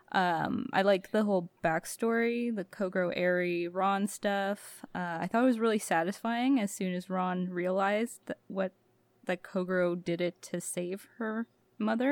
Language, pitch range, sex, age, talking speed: English, 180-220 Hz, female, 20-39, 165 wpm